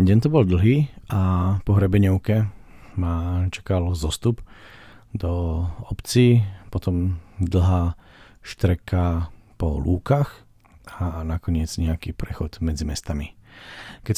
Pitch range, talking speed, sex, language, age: 85-105 Hz, 100 wpm, male, Slovak, 40-59